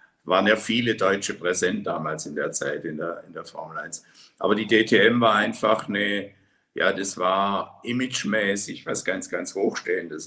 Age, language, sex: 60-79, German, male